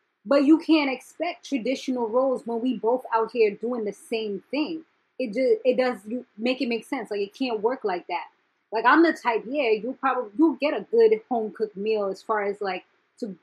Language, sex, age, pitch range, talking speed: English, female, 20-39, 215-290 Hz, 205 wpm